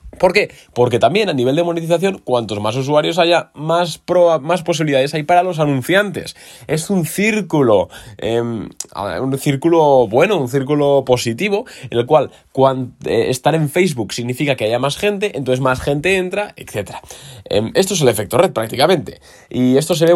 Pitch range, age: 125-170 Hz, 20-39